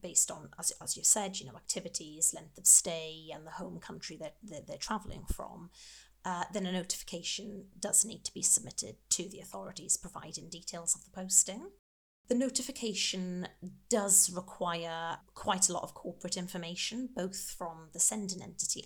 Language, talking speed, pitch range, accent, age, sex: English, 170 wpm, 170-200 Hz, British, 30-49, female